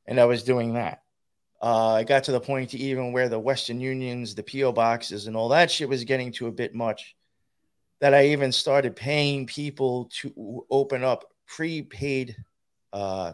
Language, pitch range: English, 110-140 Hz